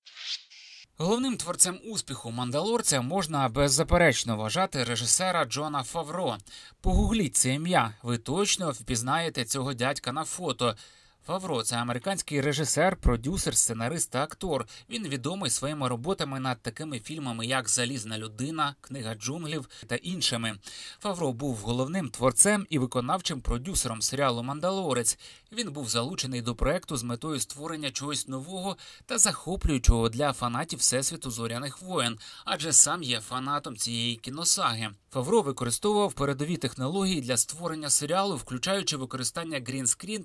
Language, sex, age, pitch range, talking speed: Ukrainian, male, 30-49, 125-170 Hz, 125 wpm